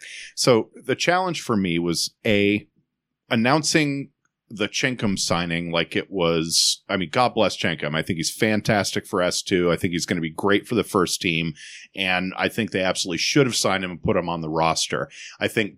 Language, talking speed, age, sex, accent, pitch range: English, 205 wpm, 40-59, male, American, 100-140 Hz